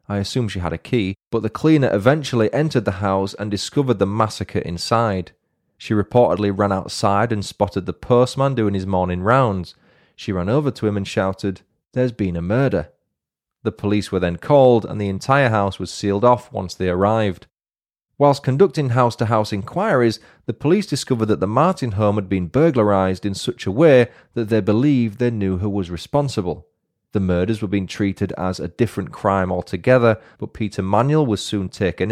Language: English